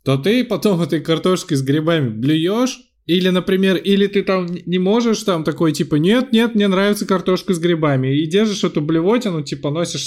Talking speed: 185 wpm